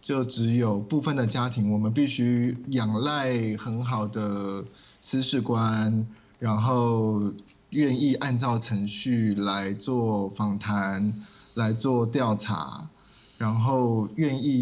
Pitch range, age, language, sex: 110-135 Hz, 20-39, Chinese, male